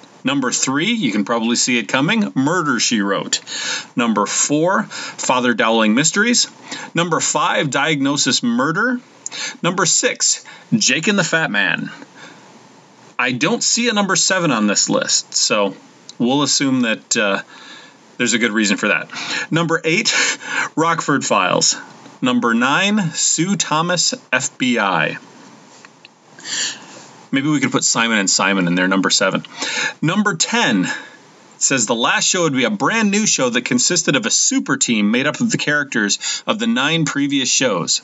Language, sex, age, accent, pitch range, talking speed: English, male, 30-49, American, 130-215 Hz, 150 wpm